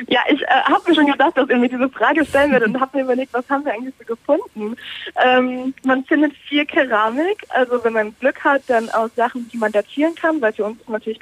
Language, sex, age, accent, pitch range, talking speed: German, female, 20-39, German, 205-250 Hz, 245 wpm